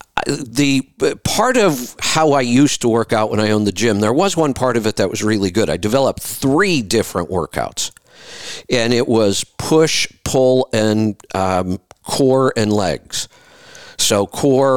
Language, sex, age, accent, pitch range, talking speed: English, male, 50-69, American, 100-130 Hz, 165 wpm